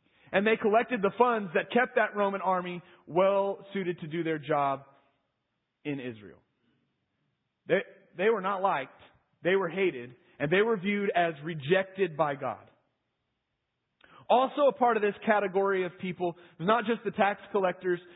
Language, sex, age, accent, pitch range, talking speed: English, male, 30-49, American, 170-220 Hz, 150 wpm